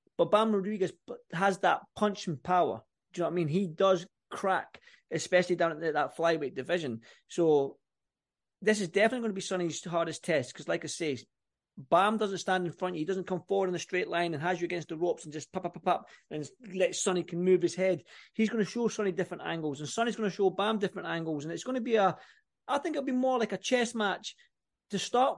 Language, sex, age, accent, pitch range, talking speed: English, male, 30-49, British, 175-220 Hz, 235 wpm